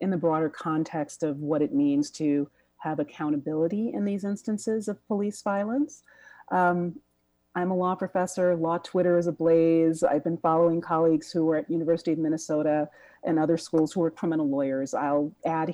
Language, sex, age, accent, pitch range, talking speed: English, female, 40-59, American, 155-185 Hz, 170 wpm